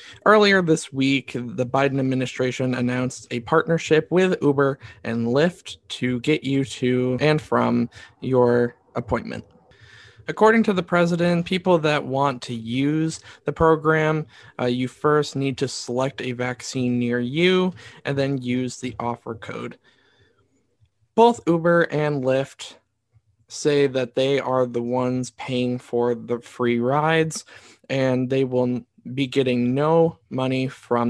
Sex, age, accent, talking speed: male, 20-39, American, 135 wpm